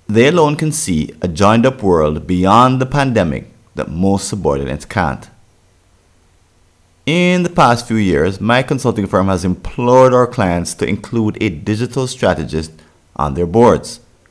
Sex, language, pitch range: male, English, 85-115 Hz